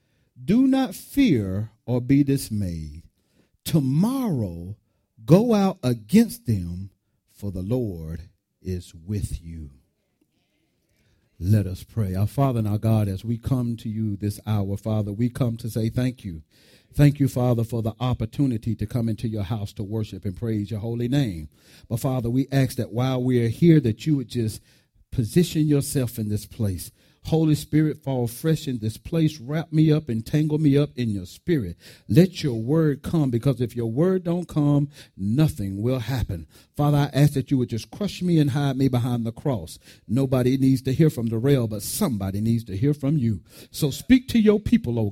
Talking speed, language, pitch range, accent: 185 wpm, English, 110-145 Hz, American